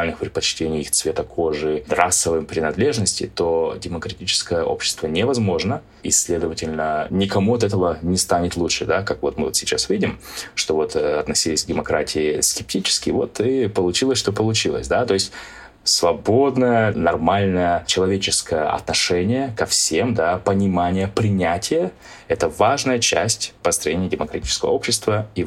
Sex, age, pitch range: male, 20-39, 80-105 Hz